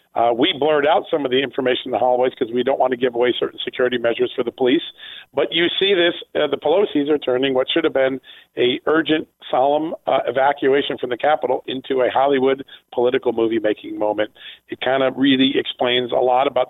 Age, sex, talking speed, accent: 40-59, male, 215 wpm, American